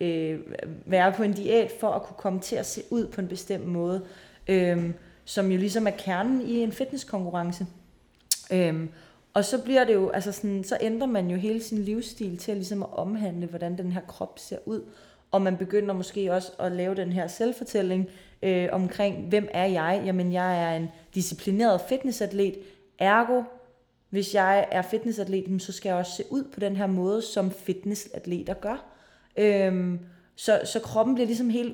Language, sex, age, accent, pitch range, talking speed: Danish, female, 30-49, native, 175-205 Hz, 170 wpm